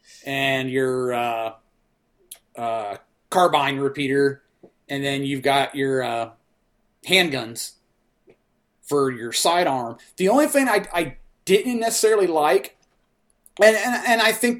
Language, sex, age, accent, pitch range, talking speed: English, male, 30-49, American, 135-200 Hz, 120 wpm